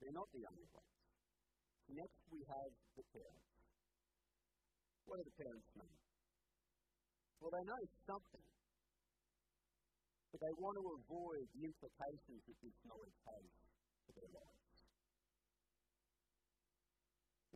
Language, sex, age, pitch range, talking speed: English, male, 50-69, 135-185 Hz, 115 wpm